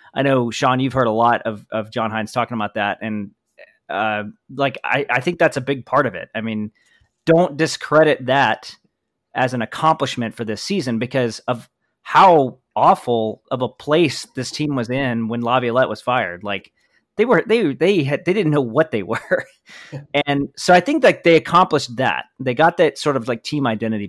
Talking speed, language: 200 wpm, English